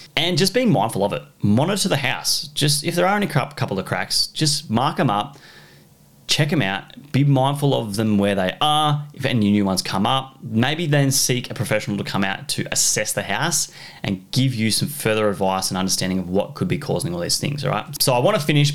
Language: English